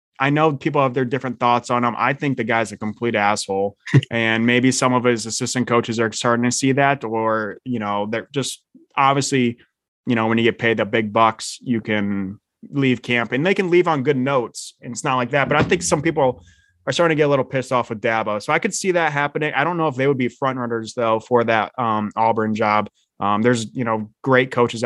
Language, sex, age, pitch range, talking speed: English, male, 20-39, 110-135 Hz, 245 wpm